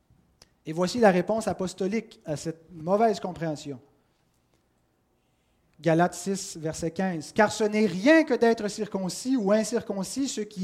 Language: French